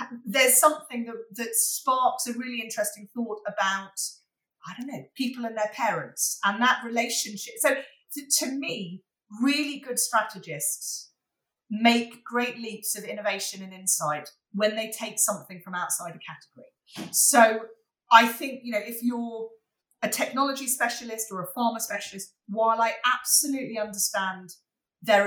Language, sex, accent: English, female, British